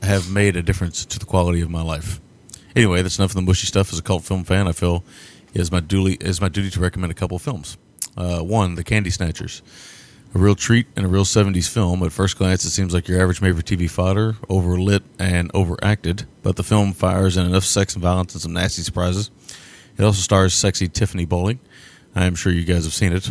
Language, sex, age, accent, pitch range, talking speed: English, male, 30-49, American, 90-100 Hz, 230 wpm